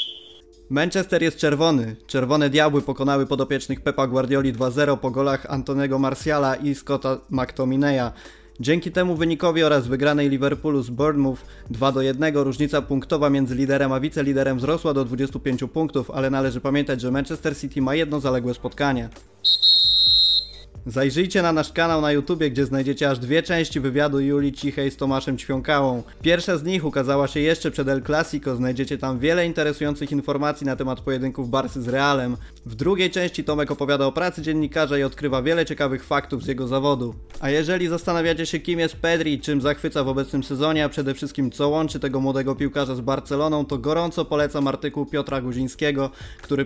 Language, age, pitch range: Polish, 20-39, 135-150 Hz